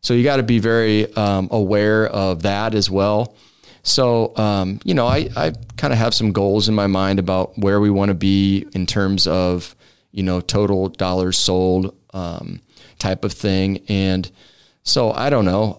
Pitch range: 95-110 Hz